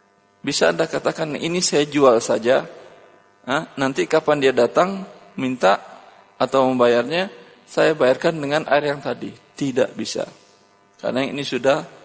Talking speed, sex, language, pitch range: 130 wpm, male, Indonesian, 100-140 Hz